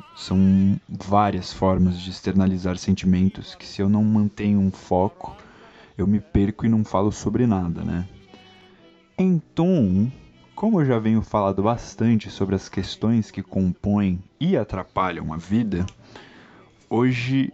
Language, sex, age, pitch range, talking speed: Portuguese, male, 20-39, 95-115 Hz, 135 wpm